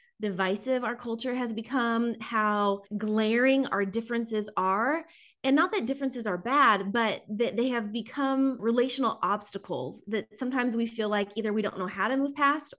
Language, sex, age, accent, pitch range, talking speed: English, female, 20-39, American, 220-270 Hz, 170 wpm